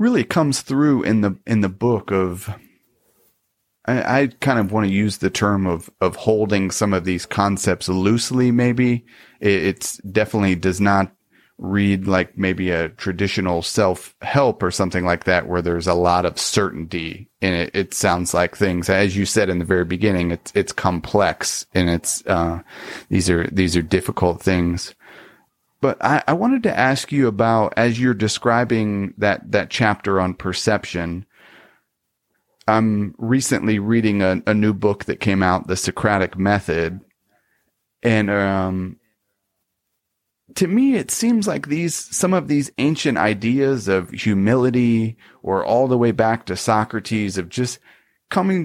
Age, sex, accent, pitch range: 30-49, male, American, 95-120 Hz